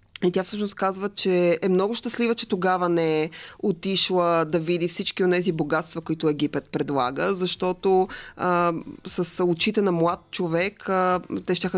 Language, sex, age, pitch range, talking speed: Bulgarian, female, 20-39, 160-195 Hz, 165 wpm